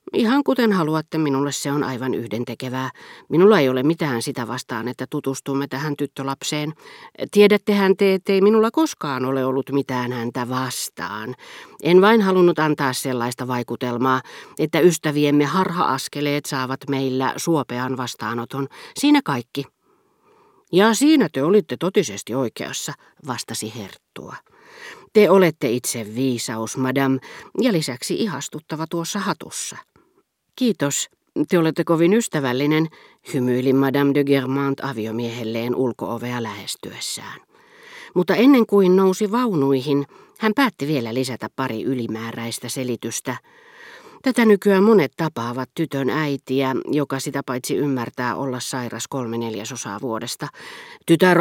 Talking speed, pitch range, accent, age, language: 120 wpm, 125-180 Hz, native, 40-59, Finnish